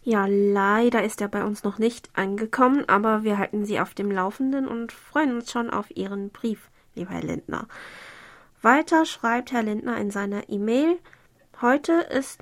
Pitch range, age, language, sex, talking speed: 200-240 Hz, 20-39, German, female, 170 wpm